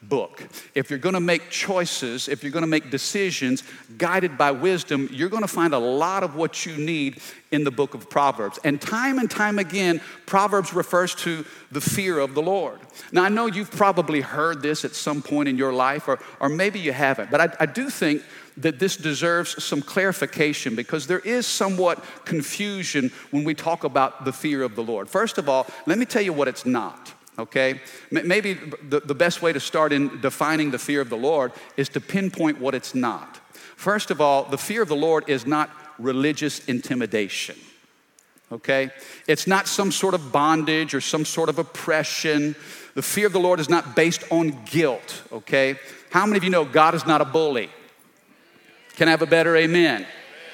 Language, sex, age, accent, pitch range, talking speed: English, male, 50-69, American, 145-190 Hz, 200 wpm